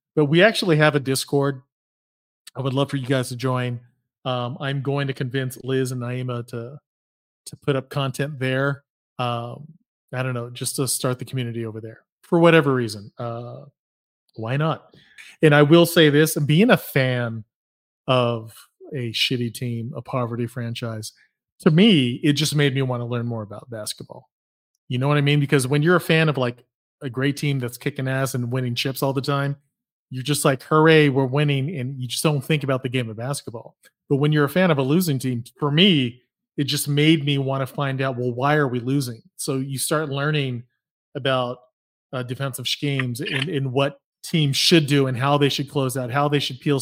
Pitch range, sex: 125-145 Hz, male